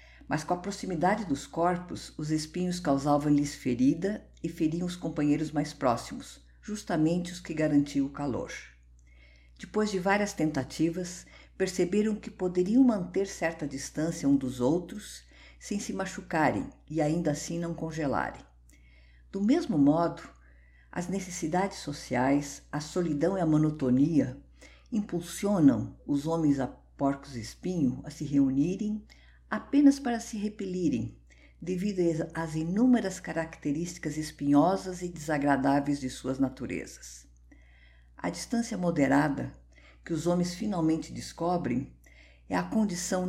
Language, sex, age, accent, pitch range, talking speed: Portuguese, female, 50-69, Brazilian, 135-180 Hz, 120 wpm